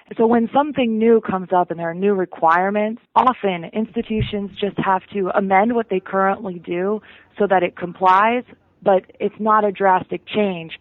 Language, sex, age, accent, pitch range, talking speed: English, female, 30-49, American, 175-205 Hz, 170 wpm